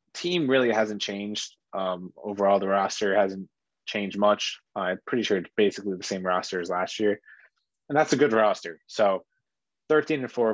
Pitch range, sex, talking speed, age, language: 105-135 Hz, male, 180 wpm, 20-39, English